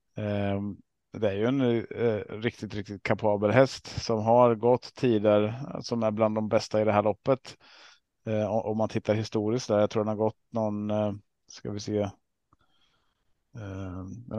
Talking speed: 170 wpm